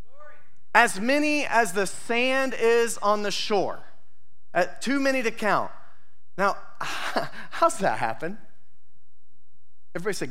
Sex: male